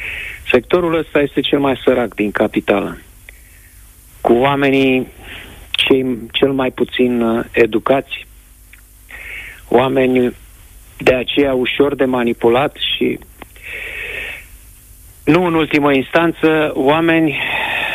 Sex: male